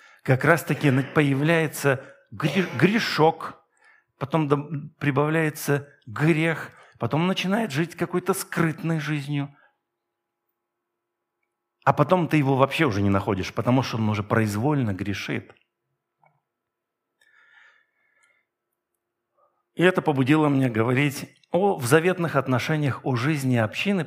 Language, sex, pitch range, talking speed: Russian, male, 120-170 Hz, 95 wpm